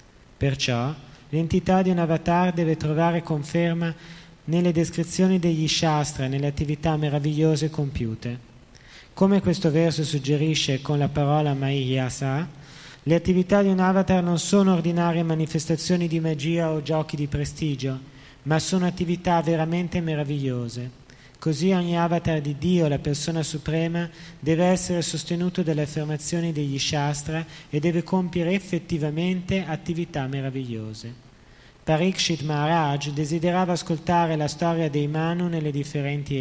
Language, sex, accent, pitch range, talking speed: Italian, male, native, 145-170 Hz, 125 wpm